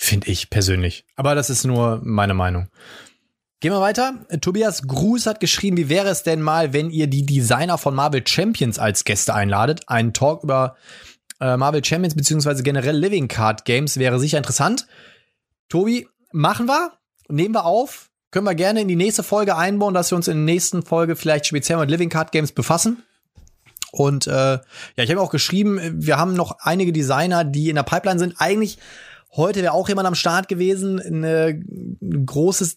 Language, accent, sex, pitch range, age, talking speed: German, German, male, 130-180 Hz, 20-39, 185 wpm